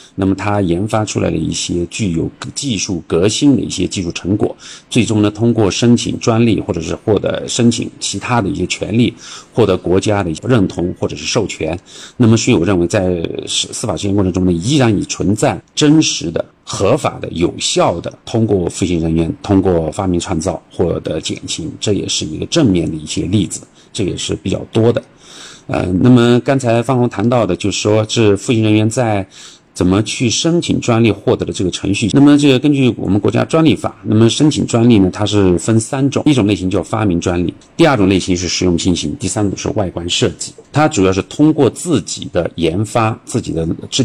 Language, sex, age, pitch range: Chinese, male, 50-69, 95-120 Hz